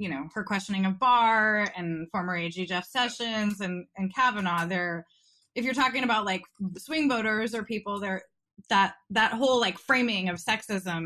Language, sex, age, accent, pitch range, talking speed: English, female, 20-39, American, 190-255 Hz, 175 wpm